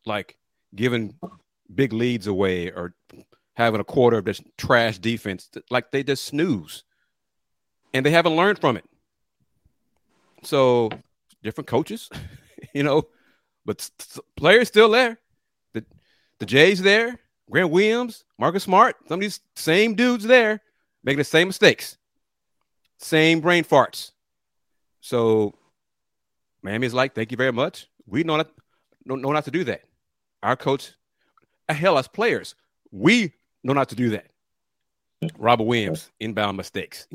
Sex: male